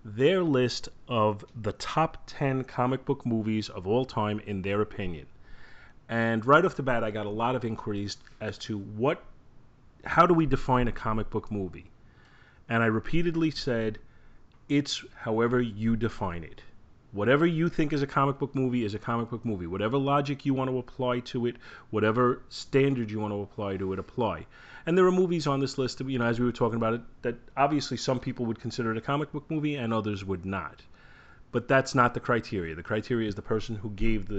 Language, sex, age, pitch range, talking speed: English, male, 30-49, 105-135 Hz, 210 wpm